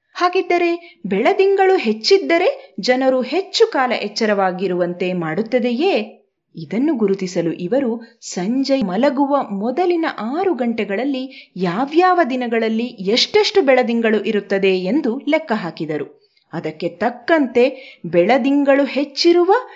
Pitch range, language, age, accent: 200-290 Hz, Kannada, 30-49, native